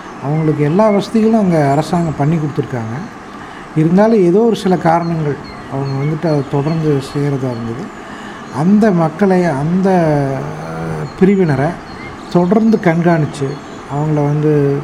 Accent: native